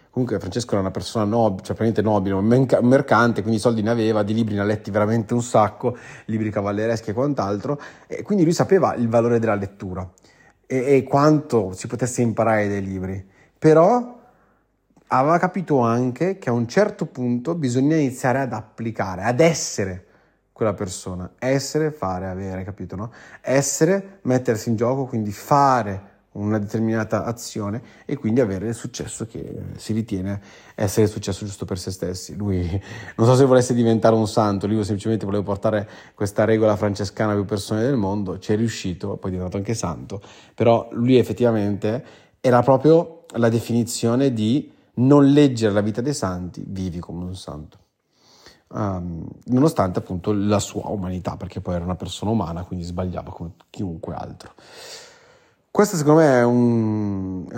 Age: 30-49